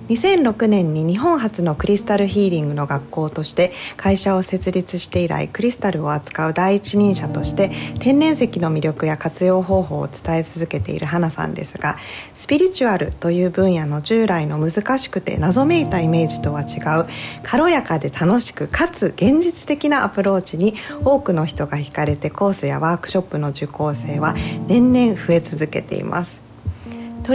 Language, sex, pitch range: Japanese, female, 160-230 Hz